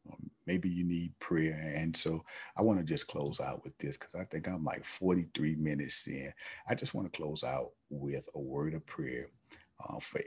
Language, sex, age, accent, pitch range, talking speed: English, male, 50-69, American, 75-90 Hz, 205 wpm